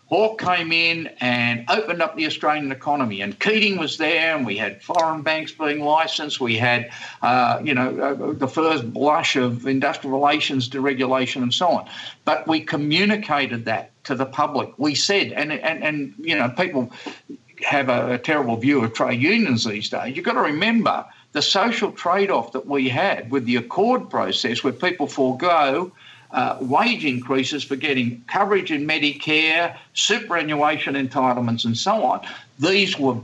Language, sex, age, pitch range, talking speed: English, male, 50-69, 130-165 Hz, 170 wpm